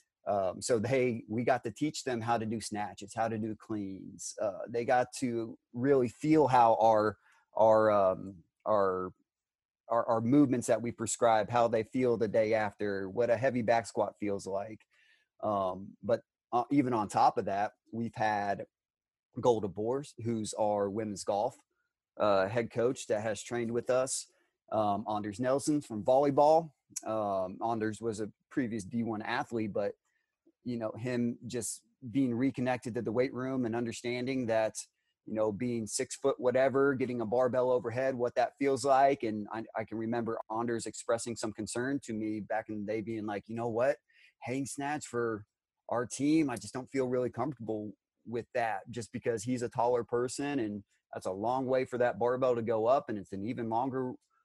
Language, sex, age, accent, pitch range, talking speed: English, male, 30-49, American, 110-130 Hz, 180 wpm